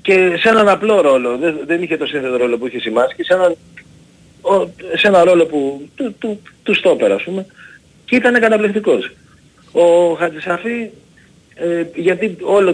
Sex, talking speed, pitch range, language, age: male, 145 wpm, 170-225 Hz, Greek, 40-59